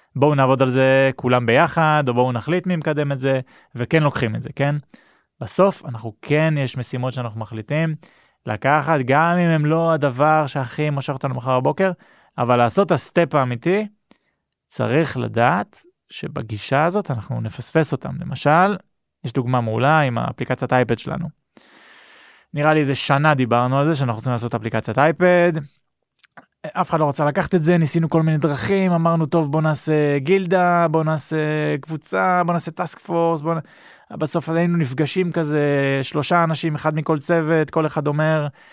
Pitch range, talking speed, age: 135-165 Hz, 160 wpm, 20-39